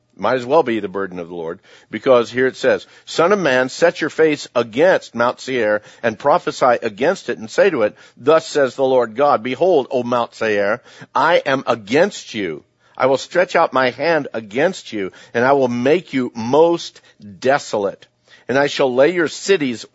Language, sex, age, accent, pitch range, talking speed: English, male, 50-69, American, 125-155 Hz, 195 wpm